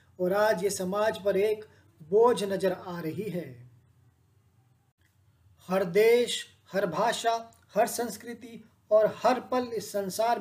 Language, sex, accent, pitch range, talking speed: Hindi, male, native, 185-215 Hz, 140 wpm